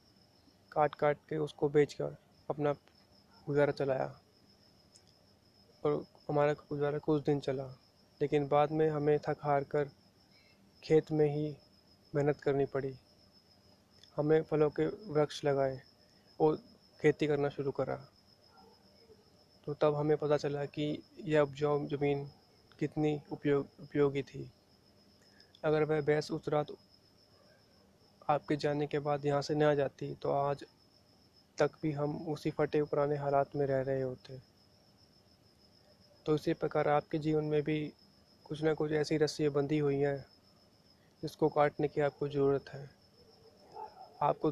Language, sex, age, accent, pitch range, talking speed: Hindi, male, 20-39, native, 115-150 Hz, 135 wpm